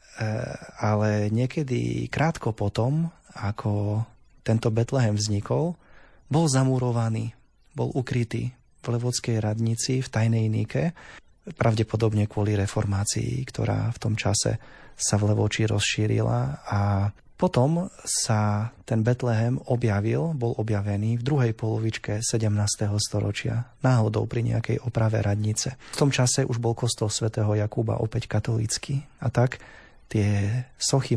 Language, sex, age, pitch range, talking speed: Slovak, male, 30-49, 105-125 Hz, 115 wpm